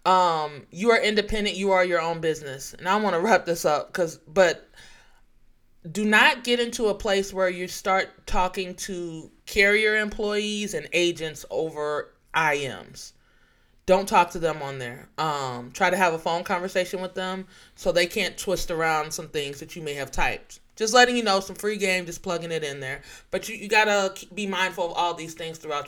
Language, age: English, 30-49